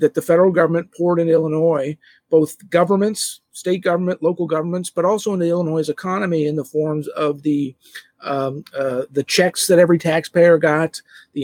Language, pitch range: English, 150-190 Hz